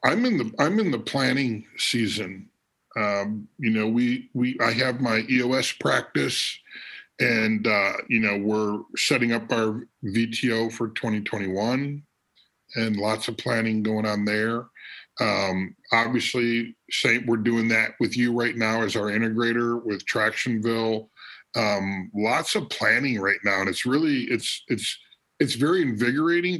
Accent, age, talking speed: American, 50-69, 145 wpm